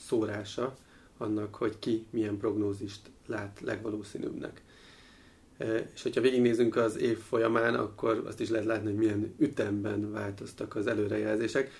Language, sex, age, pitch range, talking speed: Hungarian, male, 30-49, 105-115 Hz, 125 wpm